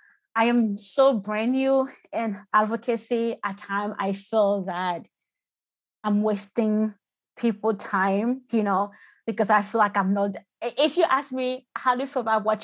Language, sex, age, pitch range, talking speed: English, female, 20-39, 210-275 Hz, 160 wpm